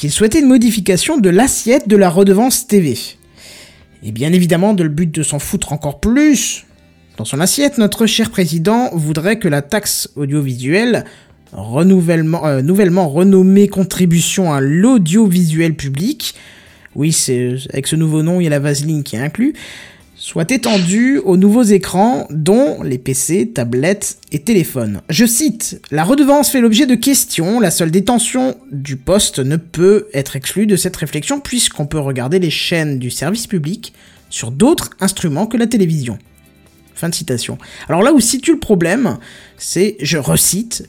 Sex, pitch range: male, 145-215 Hz